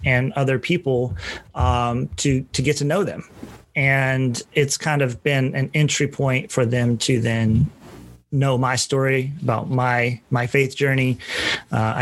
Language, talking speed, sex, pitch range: English, 155 wpm, male, 120-140 Hz